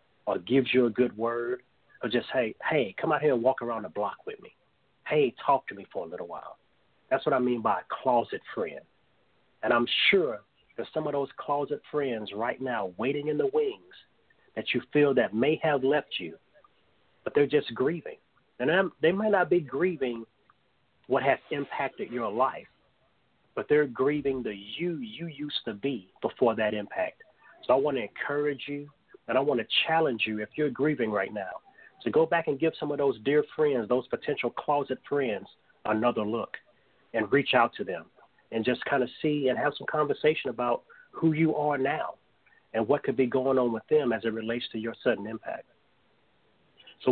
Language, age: English, 40-59